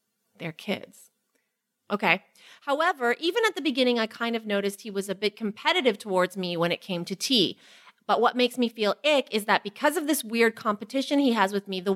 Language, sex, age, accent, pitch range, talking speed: English, female, 30-49, American, 190-250 Hz, 210 wpm